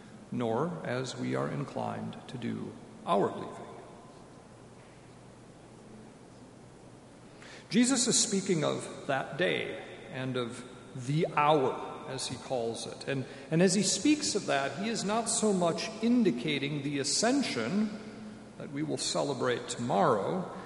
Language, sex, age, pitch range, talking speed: English, male, 50-69, 135-190 Hz, 125 wpm